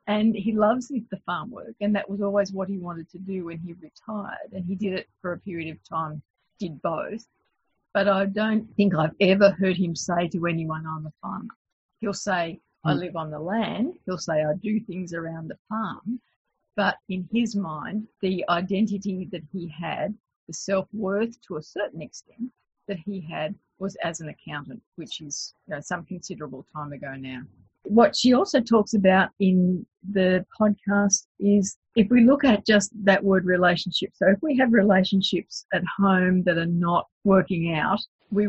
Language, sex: English, female